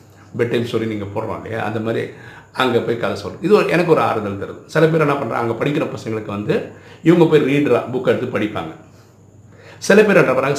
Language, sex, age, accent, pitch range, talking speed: Tamil, male, 50-69, native, 105-145 Hz, 180 wpm